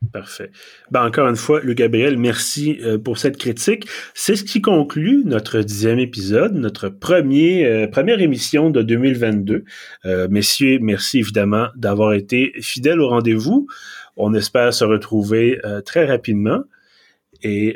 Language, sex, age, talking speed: French, male, 30-49, 140 wpm